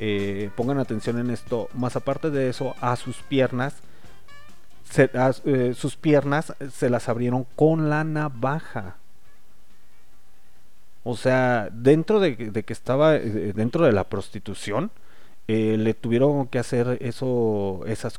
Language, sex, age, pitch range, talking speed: Spanish, male, 40-59, 110-140 Hz, 140 wpm